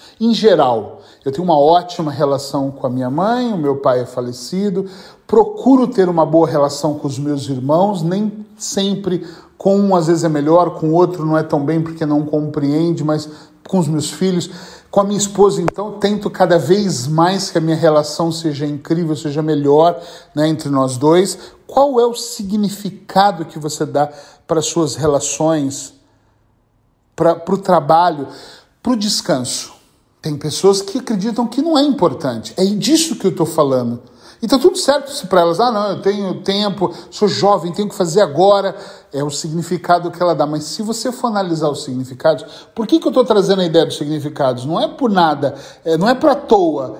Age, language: 40-59, Portuguese